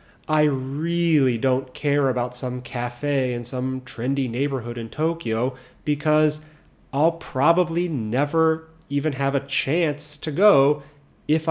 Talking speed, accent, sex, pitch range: 125 wpm, American, male, 130-170 Hz